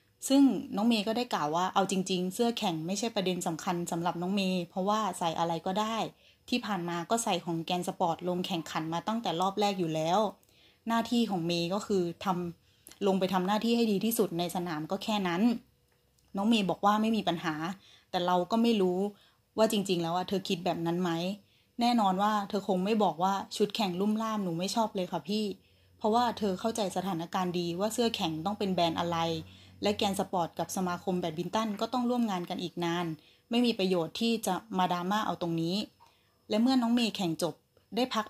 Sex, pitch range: female, 175-215 Hz